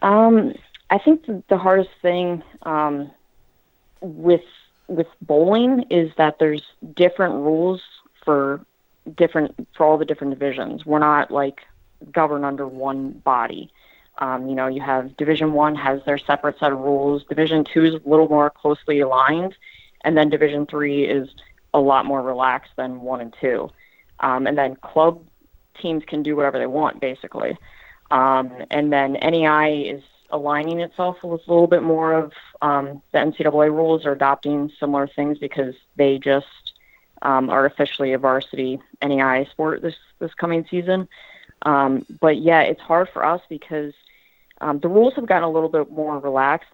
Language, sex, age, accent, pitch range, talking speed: English, female, 30-49, American, 140-160 Hz, 165 wpm